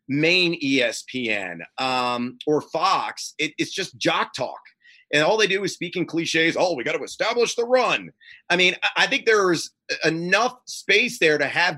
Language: English